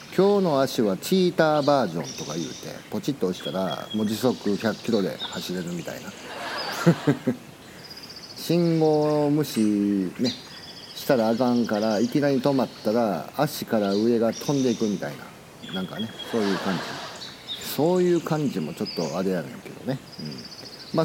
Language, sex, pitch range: Japanese, male, 115-185 Hz